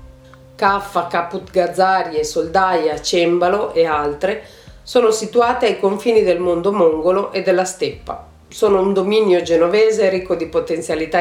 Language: Italian